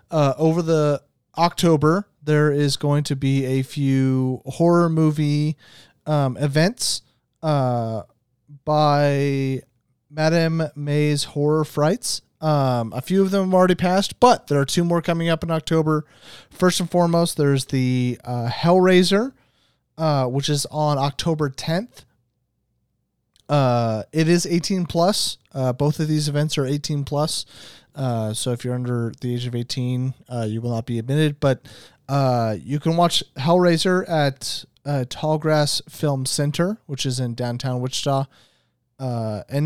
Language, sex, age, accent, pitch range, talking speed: English, male, 30-49, American, 130-160 Hz, 145 wpm